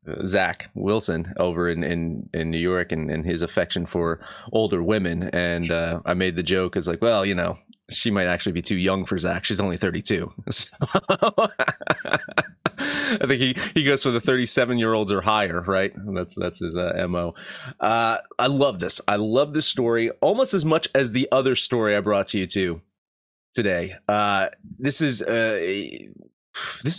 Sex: male